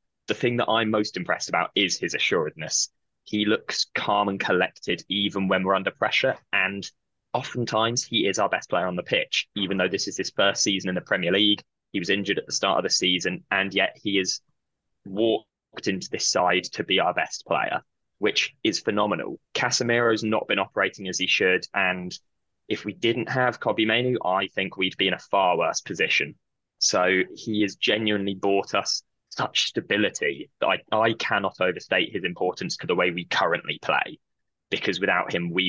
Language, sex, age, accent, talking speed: English, male, 20-39, British, 190 wpm